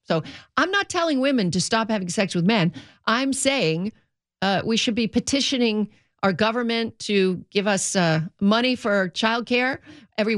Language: English